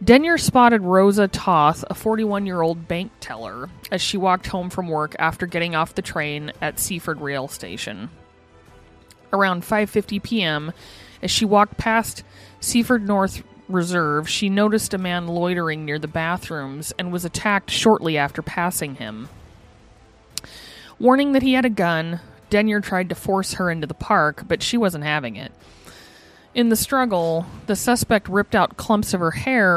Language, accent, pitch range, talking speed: English, American, 150-210 Hz, 155 wpm